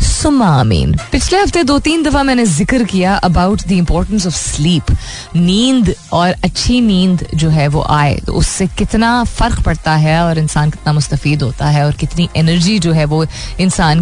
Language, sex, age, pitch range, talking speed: Hindi, female, 20-39, 155-215 Hz, 170 wpm